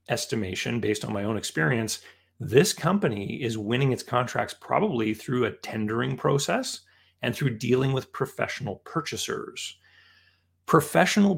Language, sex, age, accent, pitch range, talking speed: English, male, 30-49, American, 105-130 Hz, 125 wpm